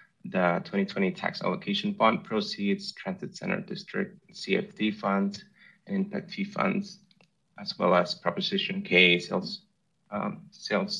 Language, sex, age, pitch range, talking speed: English, male, 30-49, 125-200 Hz, 125 wpm